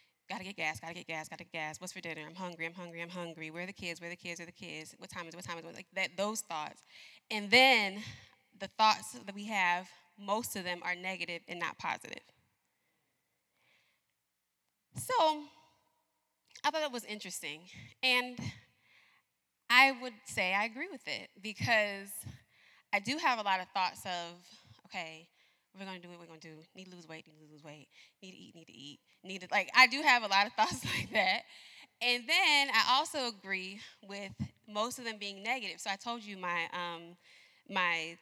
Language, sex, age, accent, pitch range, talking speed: English, female, 20-39, American, 180-260 Hz, 205 wpm